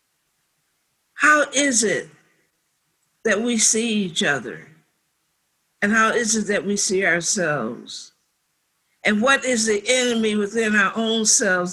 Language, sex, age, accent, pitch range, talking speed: English, female, 60-79, American, 185-235 Hz, 130 wpm